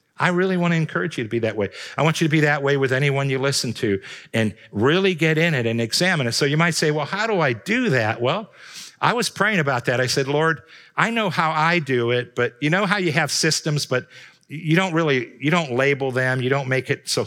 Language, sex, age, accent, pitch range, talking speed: English, male, 50-69, American, 130-175 Hz, 255 wpm